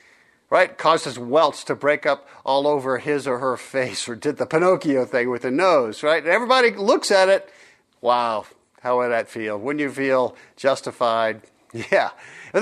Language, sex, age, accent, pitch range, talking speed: English, male, 50-69, American, 155-225 Hz, 175 wpm